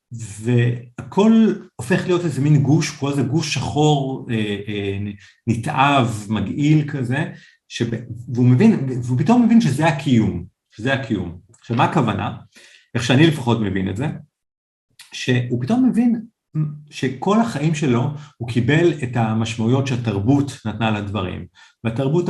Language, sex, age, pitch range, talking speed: Hebrew, male, 50-69, 110-145 Hz, 120 wpm